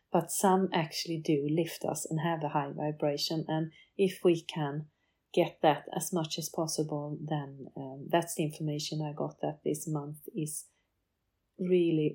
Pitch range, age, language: 155-195 Hz, 40-59, English